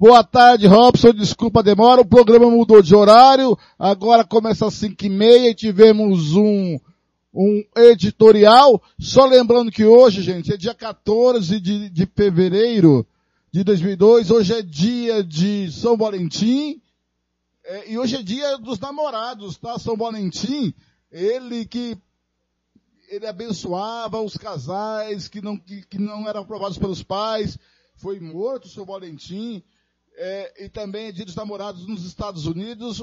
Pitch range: 200-245 Hz